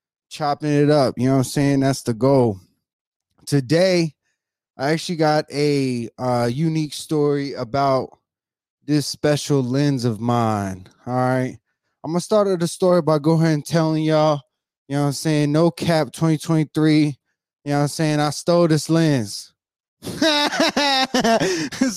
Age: 20-39